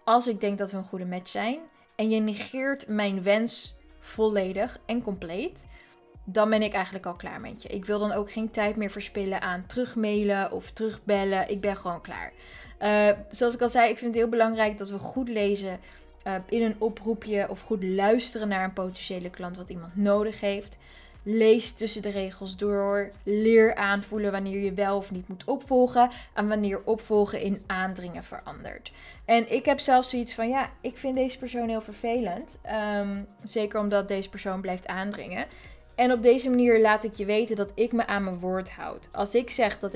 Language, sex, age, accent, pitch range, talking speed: Dutch, female, 20-39, Dutch, 195-230 Hz, 190 wpm